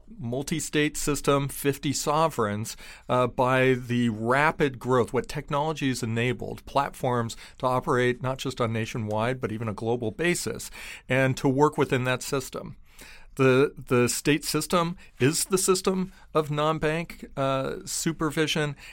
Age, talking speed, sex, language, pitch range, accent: 40-59, 135 wpm, male, English, 115-140 Hz, American